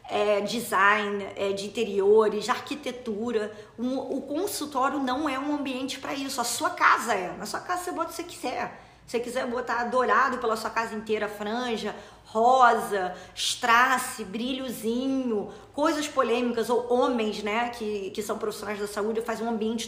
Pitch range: 220-265 Hz